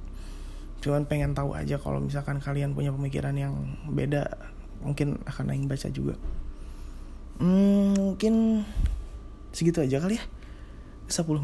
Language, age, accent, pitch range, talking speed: Indonesian, 20-39, native, 105-170 Hz, 120 wpm